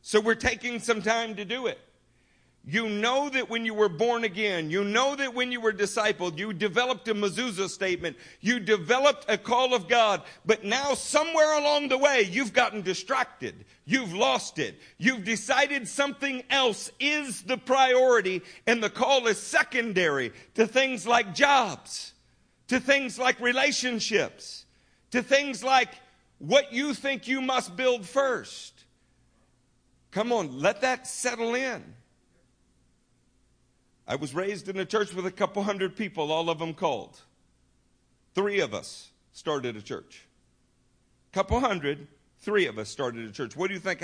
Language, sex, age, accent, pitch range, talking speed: English, male, 50-69, American, 165-250 Hz, 155 wpm